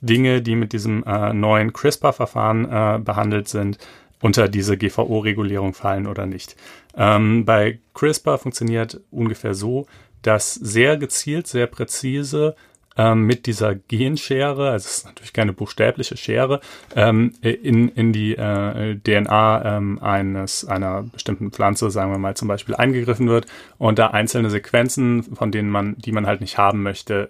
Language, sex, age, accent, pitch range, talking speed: German, male, 30-49, German, 105-125 Hz, 150 wpm